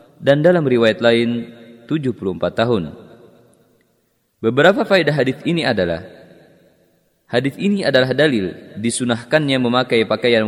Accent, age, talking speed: native, 30-49, 105 wpm